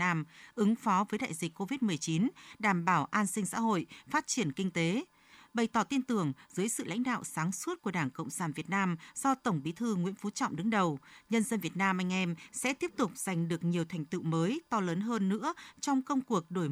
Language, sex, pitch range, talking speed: Vietnamese, female, 170-230 Hz, 235 wpm